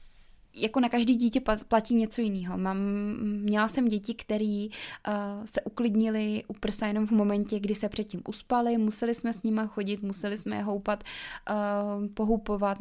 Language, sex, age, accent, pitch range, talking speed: Czech, female, 20-39, native, 205-230 Hz, 160 wpm